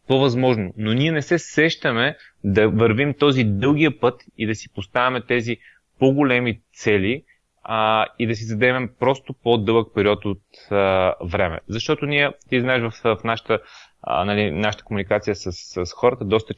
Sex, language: male, Bulgarian